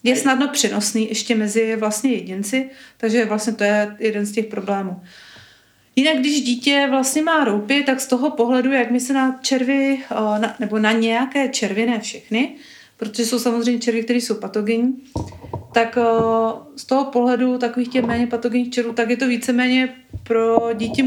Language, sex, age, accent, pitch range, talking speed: Czech, female, 40-59, native, 220-250 Hz, 160 wpm